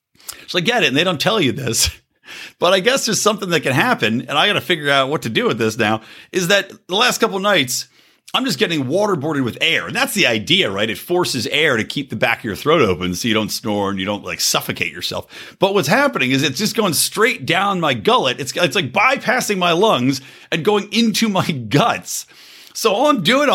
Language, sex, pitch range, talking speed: English, male, 130-215 Hz, 240 wpm